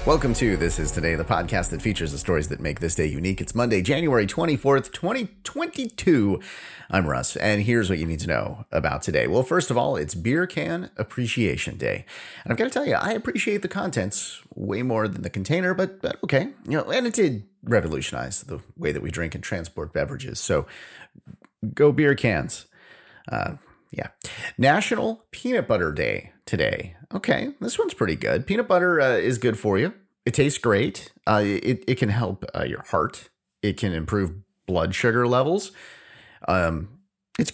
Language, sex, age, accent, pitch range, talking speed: English, male, 30-49, American, 90-145 Hz, 185 wpm